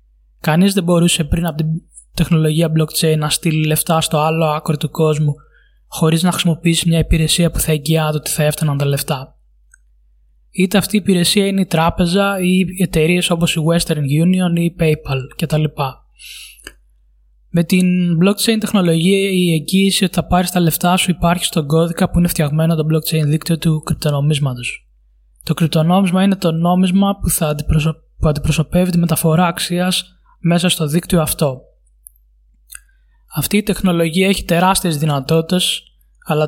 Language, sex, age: Greek, male, 20-39